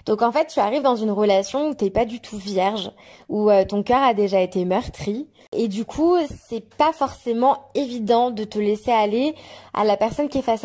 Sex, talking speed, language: female, 230 wpm, French